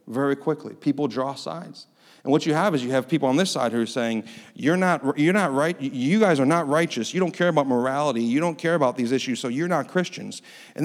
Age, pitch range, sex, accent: 40-59, 125-170 Hz, male, American